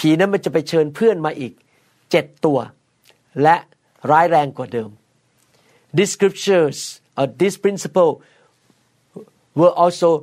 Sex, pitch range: male, 150-185 Hz